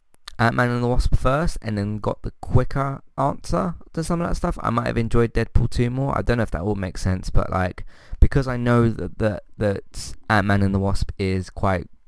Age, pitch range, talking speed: 20-39, 90-115 Hz, 220 wpm